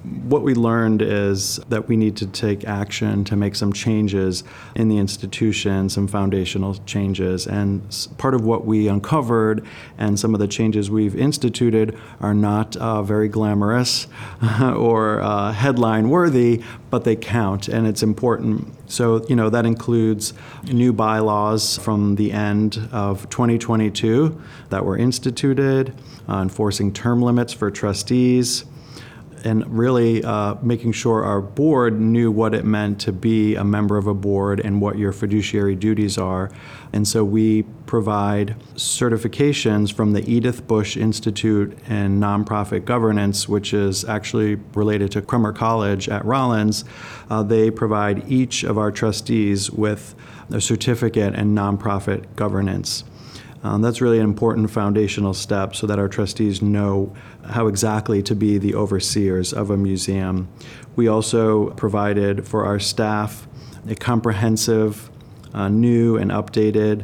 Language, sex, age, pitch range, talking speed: English, male, 30-49, 105-115 Hz, 145 wpm